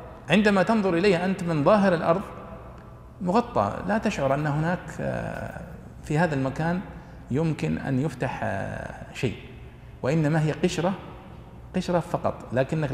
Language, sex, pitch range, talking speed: Arabic, male, 120-170 Hz, 115 wpm